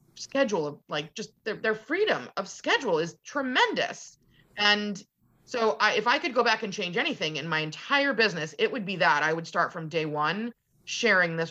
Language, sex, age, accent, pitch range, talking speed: English, female, 30-49, American, 160-210 Hz, 200 wpm